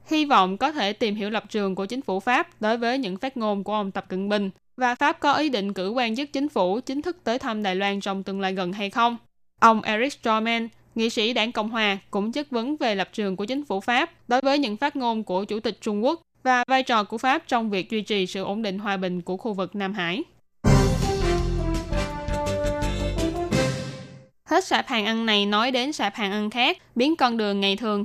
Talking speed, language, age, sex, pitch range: 230 wpm, Vietnamese, 10-29, female, 200-250 Hz